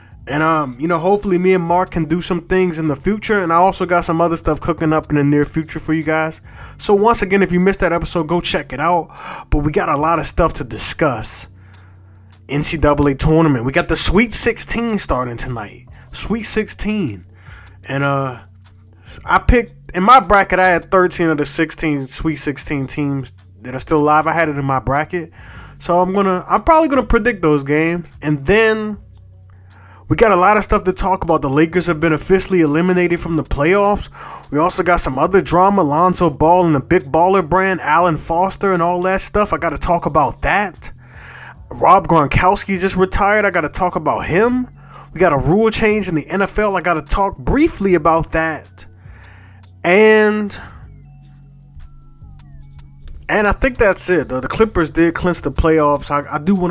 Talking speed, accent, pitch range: 195 wpm, American, 140-185 Hz